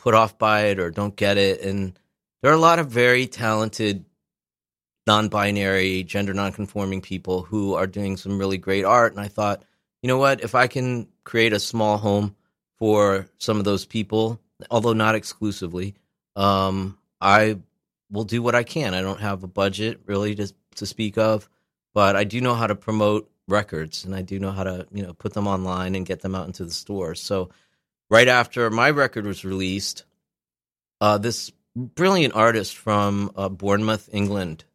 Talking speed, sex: 185 wpm, male